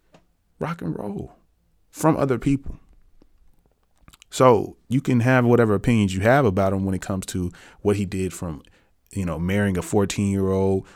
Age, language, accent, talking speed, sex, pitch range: 30-49, English, American, 170 wpm, male, 85-115 Hz